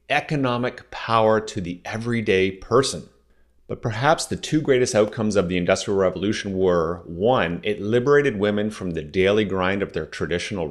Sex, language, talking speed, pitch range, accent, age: male, English, 155 wpm, 95-130 Hz, American, 30-49